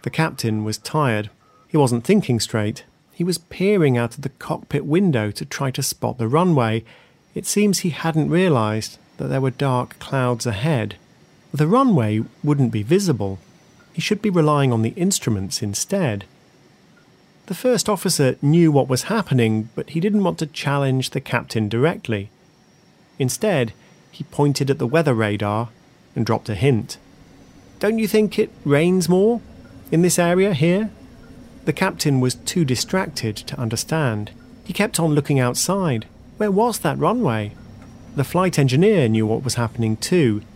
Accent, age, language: British, 40-59, English